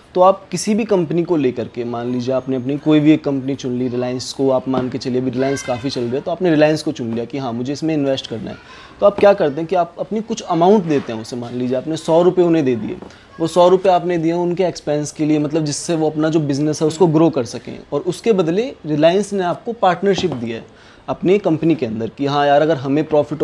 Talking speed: 260 wpm